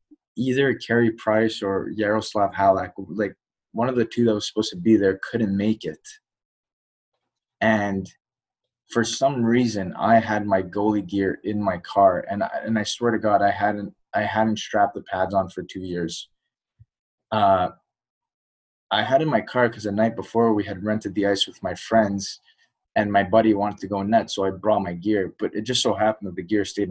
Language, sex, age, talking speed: English, male, 20-39, 200 wpm